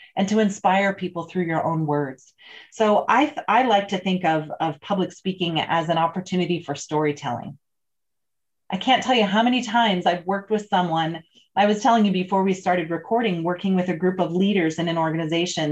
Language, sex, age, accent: English, female, 30-49, American